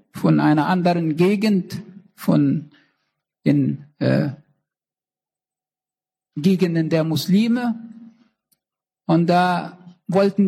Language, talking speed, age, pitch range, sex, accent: German, 75 wpm, 60-79, 175-220 Hz, male, German